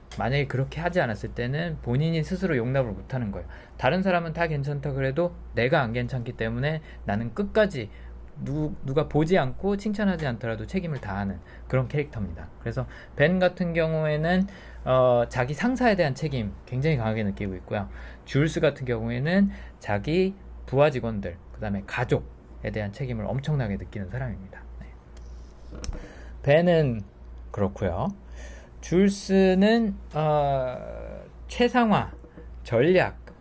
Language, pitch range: Korean, 105-170 Hz